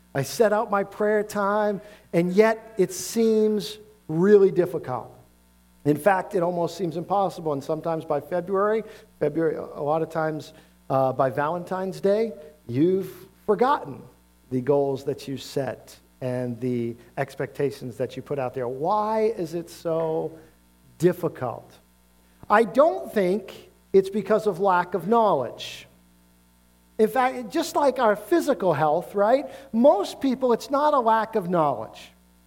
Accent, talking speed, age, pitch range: American, 140 wpm, 50-69, 140-210 Hz